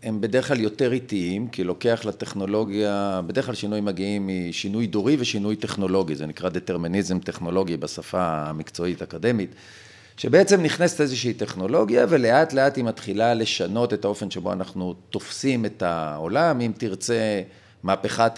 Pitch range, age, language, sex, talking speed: 100-135 Hz, 40-59, Hebrew, male, 135 wpm